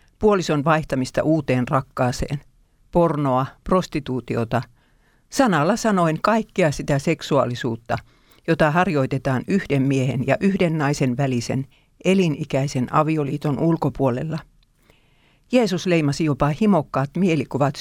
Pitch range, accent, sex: 130-170 Hz, native, female